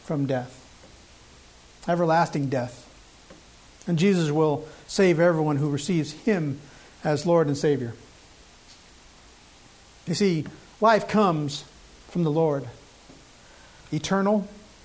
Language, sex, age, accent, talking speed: English, male, 50-69, American, 95 wpm